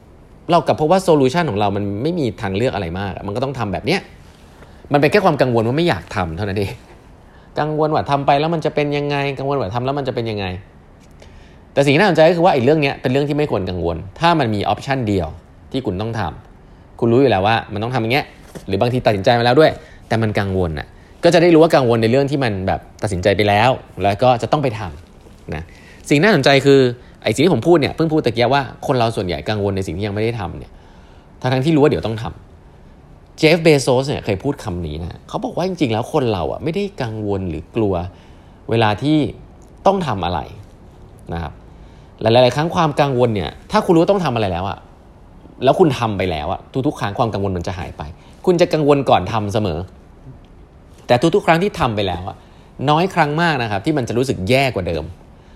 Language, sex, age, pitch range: English, male, 20-39, 90-145 Hz